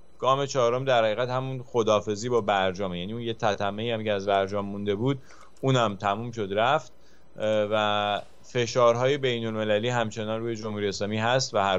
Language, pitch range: English, 105-130 Hz